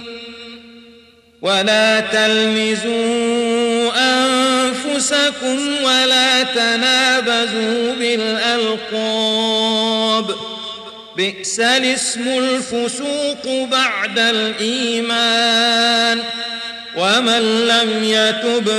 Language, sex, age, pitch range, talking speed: Arabic, male, 40-59, 225-255 Hz, 45 wpm